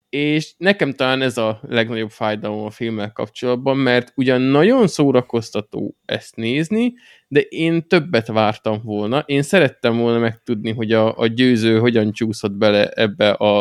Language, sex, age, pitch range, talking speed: Hungarian, male, 20-39, 115-145 Hz, 150 wpm